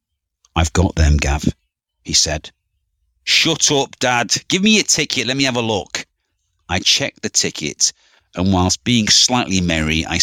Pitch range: 80-110 Hz